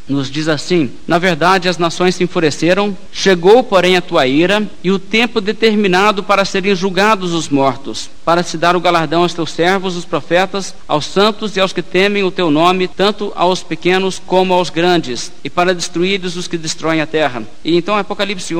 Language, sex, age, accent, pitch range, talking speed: Portuguese, male, 60-79, Brazilian, 160-190 Hz, 190 wpm